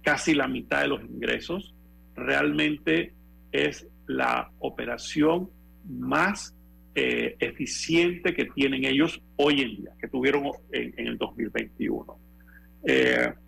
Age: 50-69